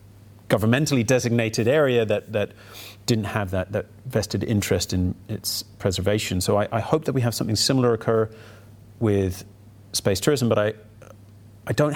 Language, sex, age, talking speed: English, male, 30-49, 155 wpm